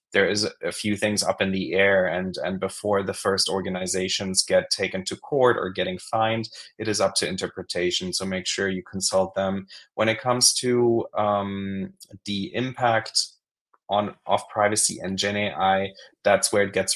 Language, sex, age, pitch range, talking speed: English, male, 20-39, 95-110 Hz, 175 wpm